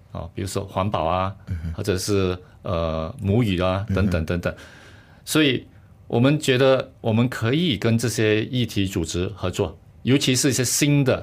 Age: 50-69